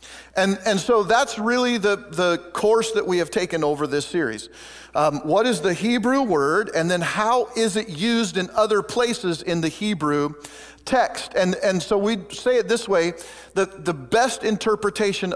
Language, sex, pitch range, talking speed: English, male, 170-220 Hz, 180 wpm